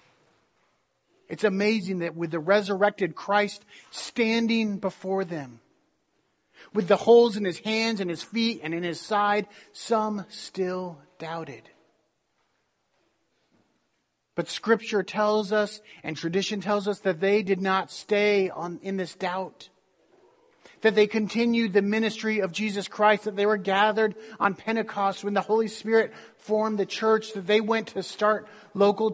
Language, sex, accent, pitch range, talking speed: English, male, American, 185-215 Hz, 145 wpm